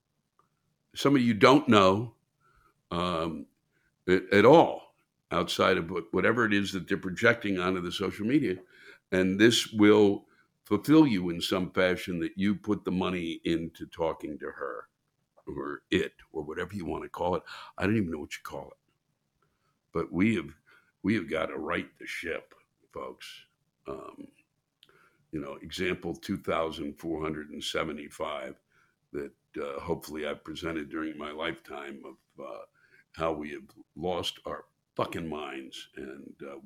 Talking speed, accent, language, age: 145 wpm, American, English, 60-79